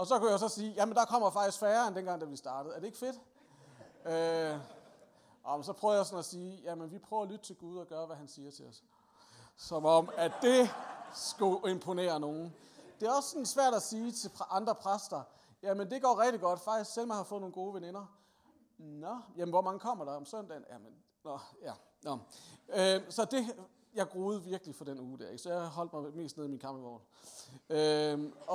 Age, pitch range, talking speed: 40-59, 160-215 Hz, 225 wpm